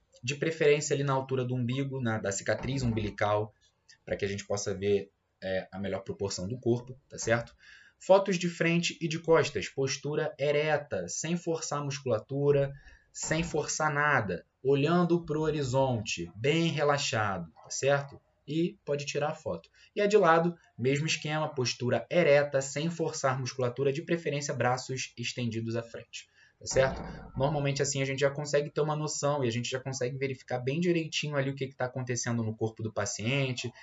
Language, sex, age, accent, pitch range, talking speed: Portuguese, male, 20-39, Brazilian, 110-145 Hz, 170 wpm